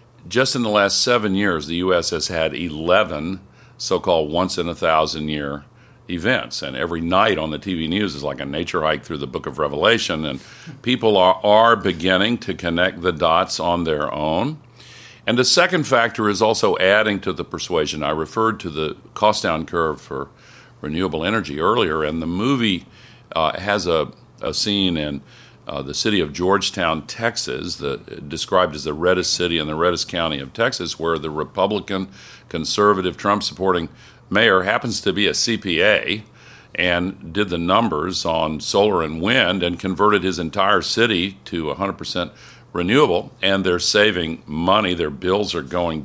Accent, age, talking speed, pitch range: American, 50-69, 165 wpm, 85-105 Hz